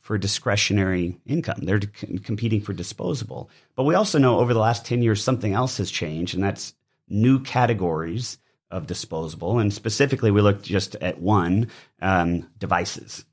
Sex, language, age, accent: male, English, 30-49, American